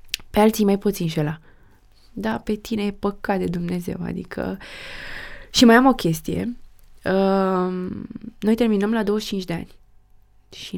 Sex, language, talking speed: female, Romanian, 145 wpm